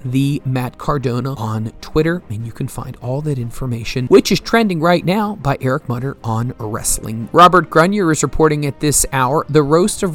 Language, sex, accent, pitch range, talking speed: English, male, American, 125-175 Hz, 190 wpm